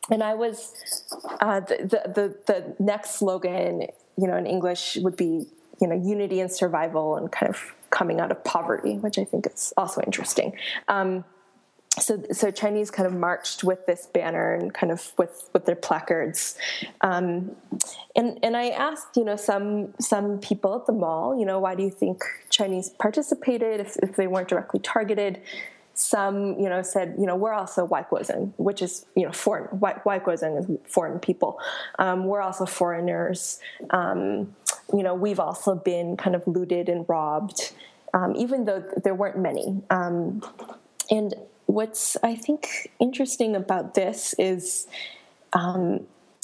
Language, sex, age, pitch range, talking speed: English, female, 20-39, 180-215 Hz, 165 wpm